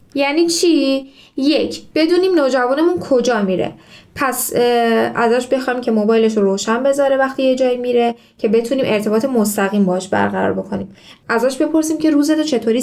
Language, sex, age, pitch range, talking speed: Persian, female, 10-29, 215-290 Hz, 145 wpm